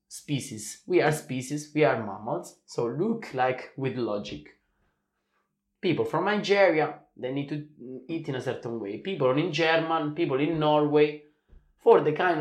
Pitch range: 120-150 Hz